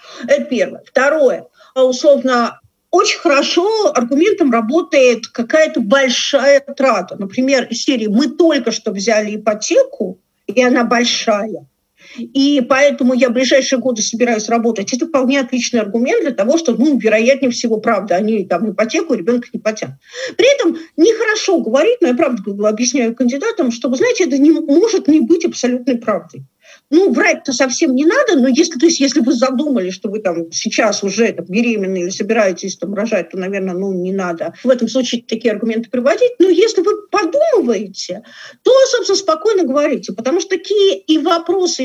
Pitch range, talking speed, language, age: 230-325 Hz, 165 wpm, Russian, 50-69